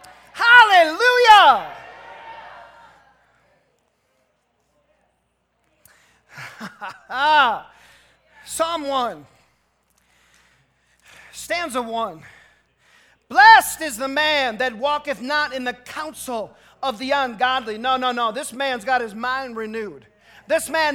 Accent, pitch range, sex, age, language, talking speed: American, 255-315 Hz, male, 40-59, English, 85 wpm